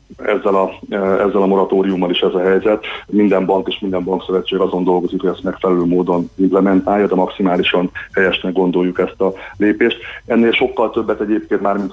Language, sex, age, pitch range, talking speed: Hungarian, male, 30-49, 90-100 Hz, 170 wpm